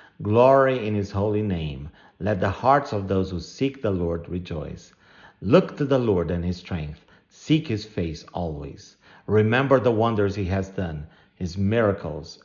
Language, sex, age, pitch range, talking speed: English, male, 50-69, 85-115 Hz, 165 wpm